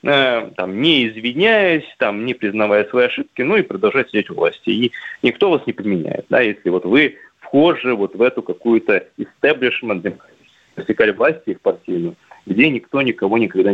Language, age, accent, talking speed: Russian, 20-39, native, 170 wpm